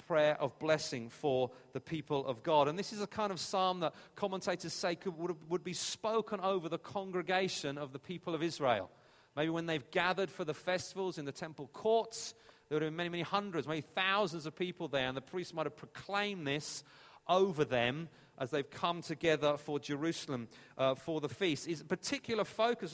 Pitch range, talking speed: 145-185 Hz, 195 wpm